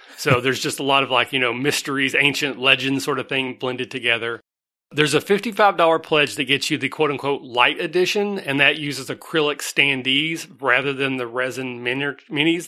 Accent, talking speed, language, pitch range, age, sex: American, 185 wpm, English, 125-155 Hz, 30-49, male